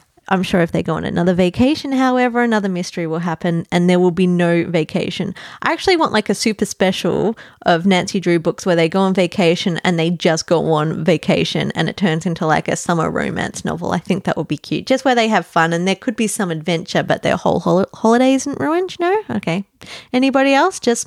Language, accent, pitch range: English, Australian, 170-235 Hz